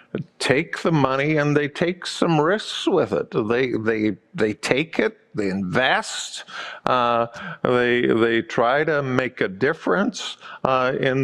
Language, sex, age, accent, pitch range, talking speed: English, male, 50-69, American, 125-175 Hz, 145 wpm